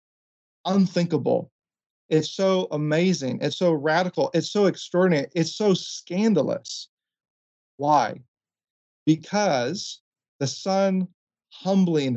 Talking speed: 90 wpm